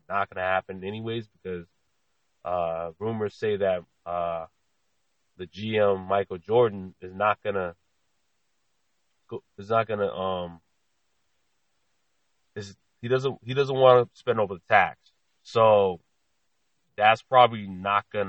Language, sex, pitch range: English, male, 90-115 Hz